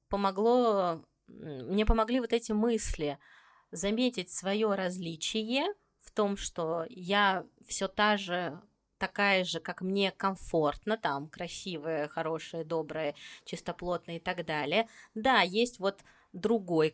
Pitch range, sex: 170-220 Hz, female